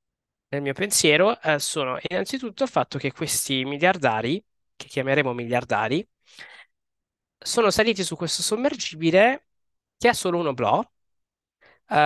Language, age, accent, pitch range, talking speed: Italian, 20-39, native, 130-190 Hz, 125 wpm